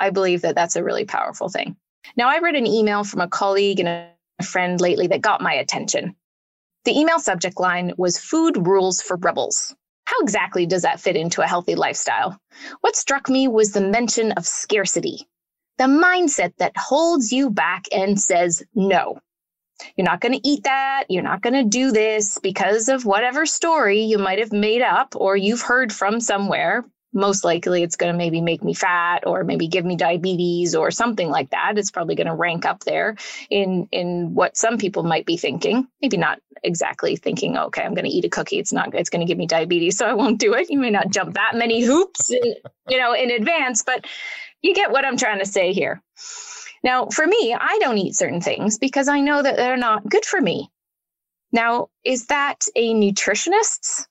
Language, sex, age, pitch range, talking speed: English, female, 20-39, 190-285 Hz, 205 wpm